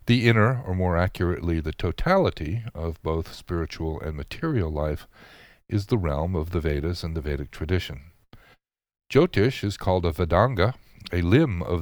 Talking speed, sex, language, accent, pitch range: 155 wpm, male, English, American, 80-105 Hz